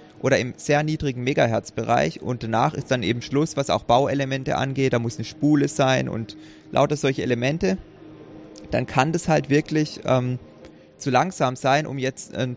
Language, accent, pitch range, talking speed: German, German, 115-145 Hz, 170 wpm